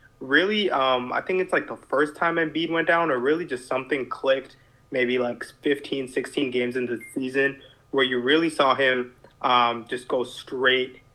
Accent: American